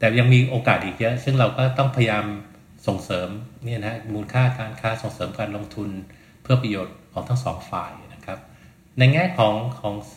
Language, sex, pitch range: Thai, male, 105-125 Hz